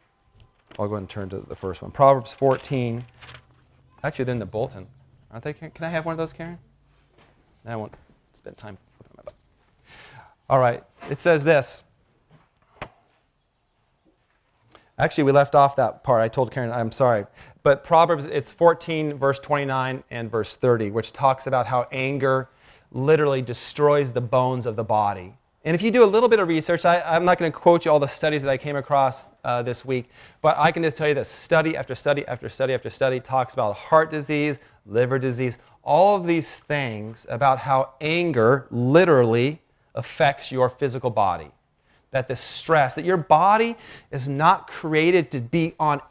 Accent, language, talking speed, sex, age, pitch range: American, English, 175 wpm, male, 30-49, 125-155 Hz